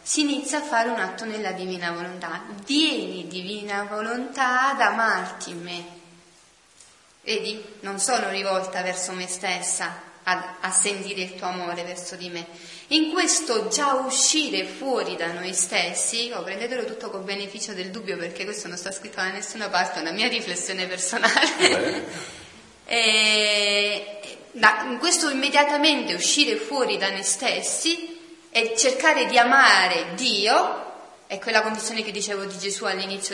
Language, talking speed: Italian, 140 wpm